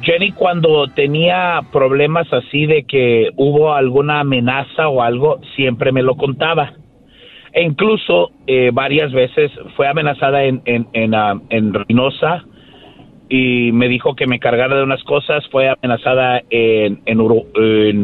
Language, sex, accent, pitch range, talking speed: Spanish, male, Mexican, 125-155 Hz, 145 wpm